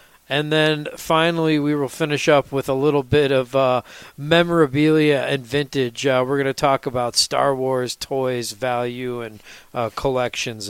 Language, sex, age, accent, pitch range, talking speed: English, male, 40-59, American, 135-160 Hz, 155 wpm